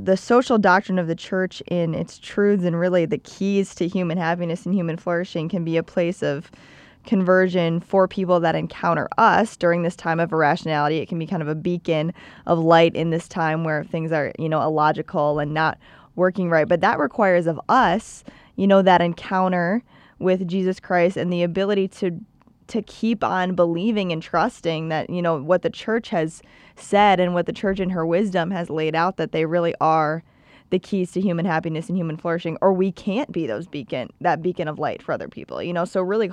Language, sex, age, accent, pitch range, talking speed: English, female, 20-39, American, 165-185 Hz, 210 wpm